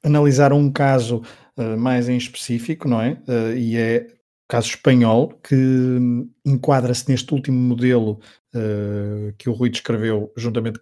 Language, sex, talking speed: Portuguese, male, 145 wpm